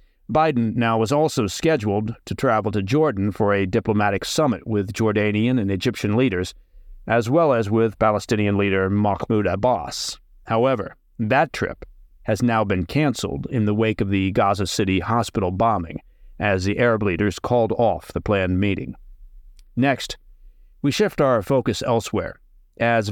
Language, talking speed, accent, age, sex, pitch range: English, 150 wpm, American, 40-59, male, 100-120 Hz